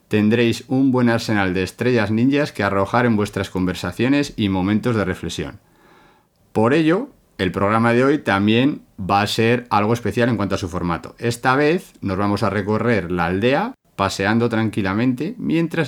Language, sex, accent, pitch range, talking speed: Spanish, male, Spanish, 95-125 Hz, 165 wpm